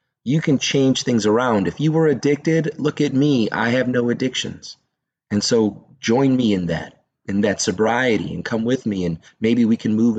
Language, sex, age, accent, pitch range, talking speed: English, male, 30-49, American, 120-165 Hz, 200 wpm